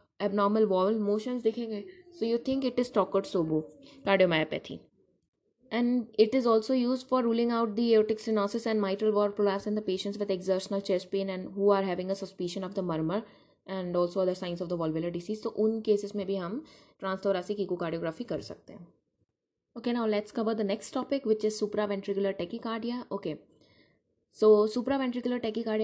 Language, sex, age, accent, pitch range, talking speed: English, female, 20-39, Indian, 195-235 Hz, 170 wpm